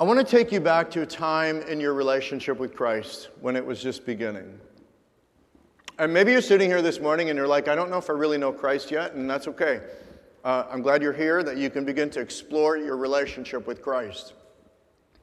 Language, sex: English, male